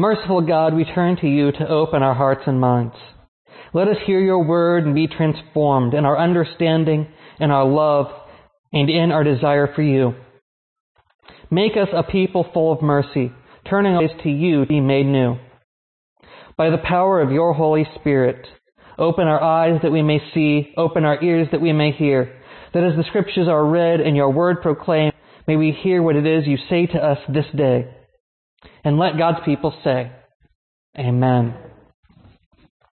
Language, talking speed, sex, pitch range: English, 175 wpm, male, 145-180 Hz